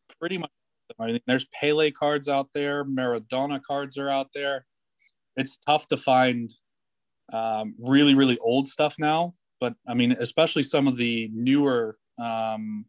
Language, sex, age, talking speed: English, male, 20-39, 145 wpm